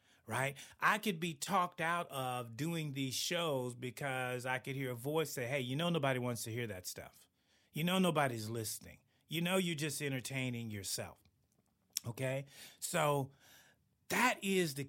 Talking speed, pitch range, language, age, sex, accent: 165 wpm, 120-160 Hz, English, 30-49, male, American